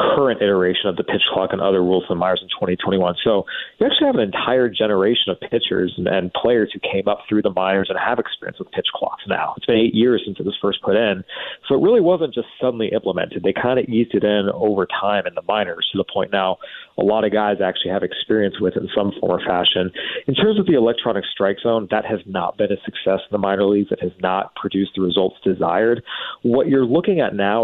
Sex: male